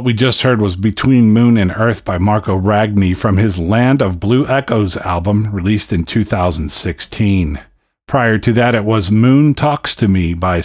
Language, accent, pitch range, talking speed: English, American, 95-120 Hz, 180 wpm